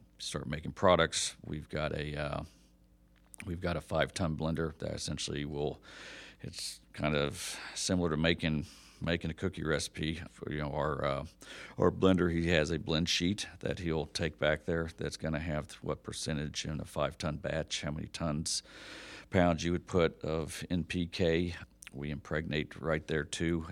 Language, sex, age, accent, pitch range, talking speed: English, male, 50-69, American, 75-85 Hz, 170 wpm